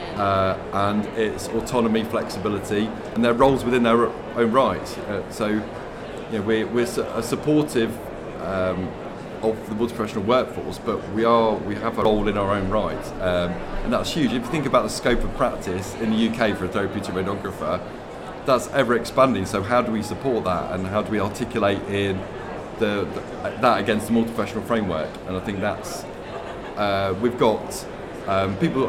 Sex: male